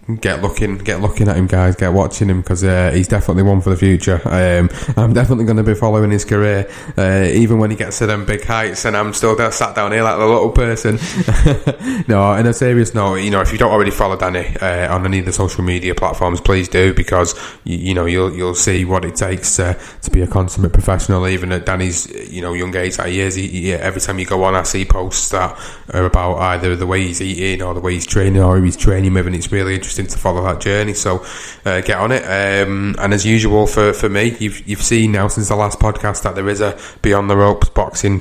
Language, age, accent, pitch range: English, 20-39, British, 90-105 Hz